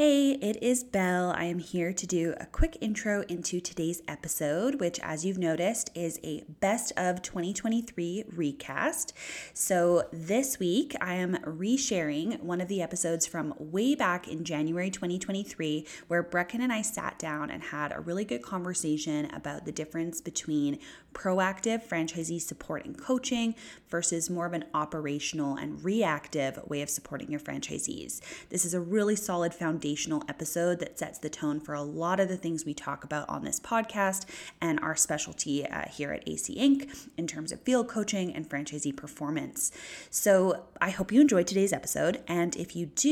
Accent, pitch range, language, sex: American, 155-200 Hz, English, female